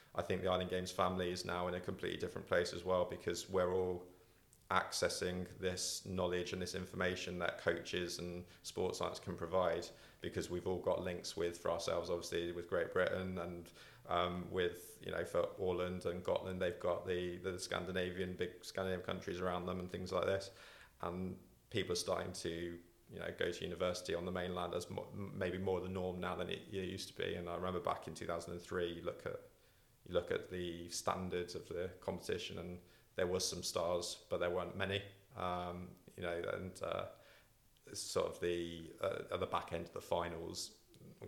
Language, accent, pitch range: English, British, 90-95 Hz